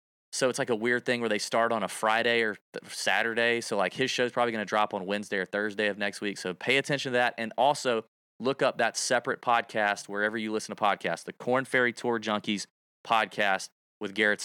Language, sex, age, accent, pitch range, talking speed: English, male, 30-49, American, 105-135 Hz, 230 wpm